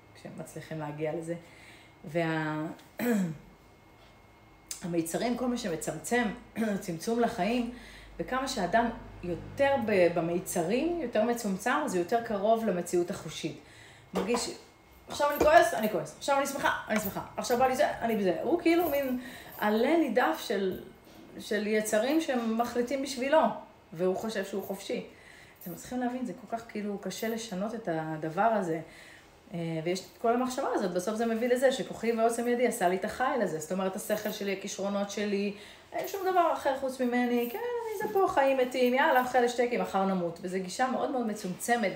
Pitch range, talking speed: 180-245 Hz, 160 wpm